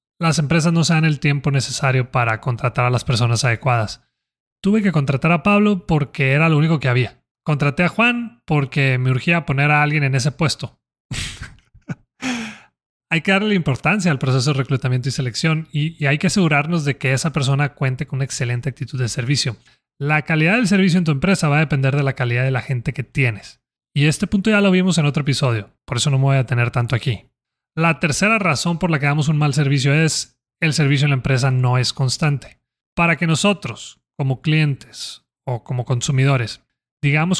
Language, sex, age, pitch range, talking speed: Spanish, male, 30-49, 135-170 Hz, 205 wpm